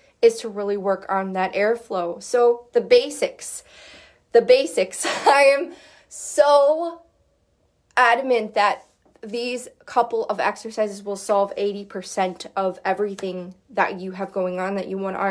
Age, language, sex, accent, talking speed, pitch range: 20-39, English, female, American, 135 wpm, 190-240 Hz